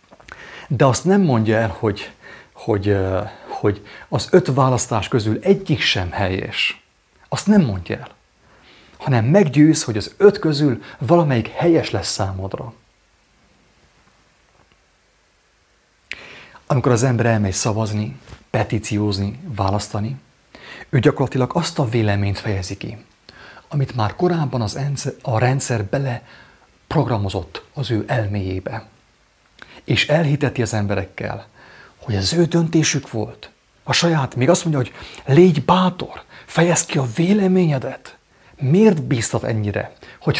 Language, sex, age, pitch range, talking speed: English, male, 30-49, 105-150 Hz, 115 wpm